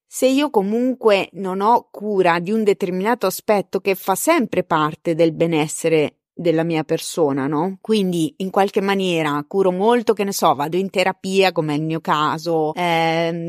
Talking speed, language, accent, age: 170 wpm, Italian, native, 30-49